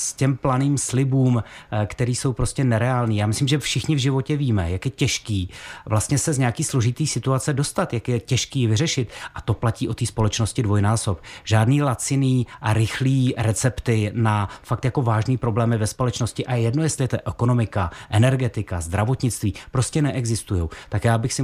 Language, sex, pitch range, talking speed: Czech, male, 105-130 Hz, 170 wpm